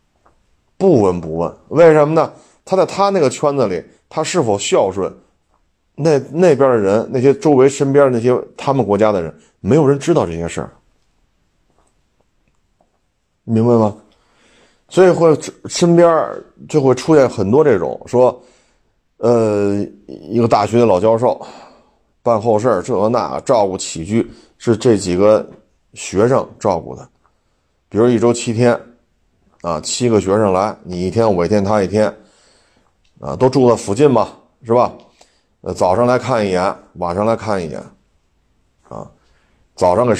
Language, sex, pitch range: Chinese, male, 90-120 Hz